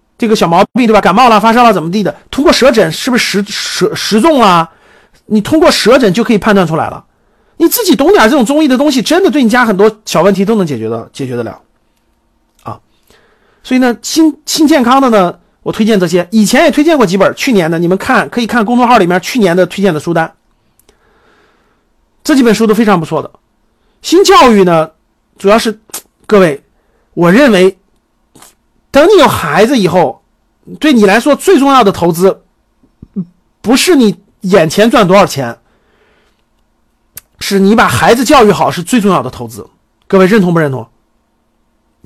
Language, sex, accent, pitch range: Chinese, male, native, 170-255 Hz